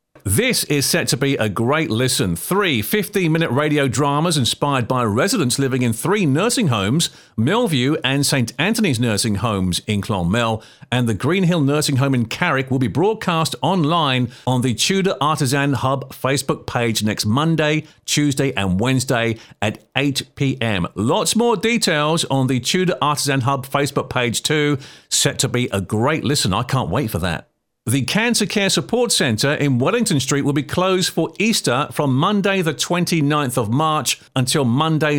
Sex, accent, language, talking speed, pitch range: male, British, English, 165 wpm, 125-160 Hz